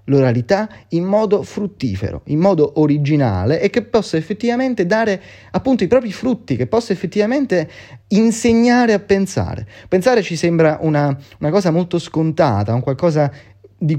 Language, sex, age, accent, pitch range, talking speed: Italian, male, 30-49, native, 120-175 Hz, 140 wpm